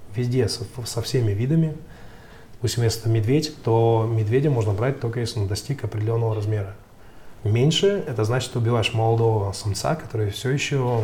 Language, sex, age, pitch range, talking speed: Russian, male, 20-39, 110-130 Hz, 145 wpm